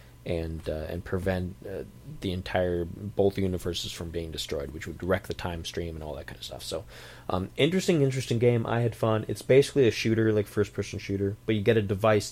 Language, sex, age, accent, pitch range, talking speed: English, male, 30-49, American, 85-115 Hz, 220 wpm